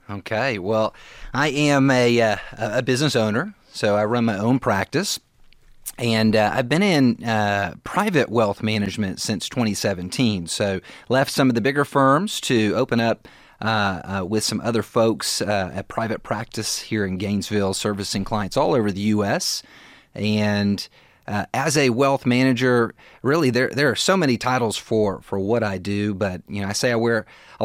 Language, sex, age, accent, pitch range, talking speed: English, male, 30-49, American, 105-125 Hz, 175 wpm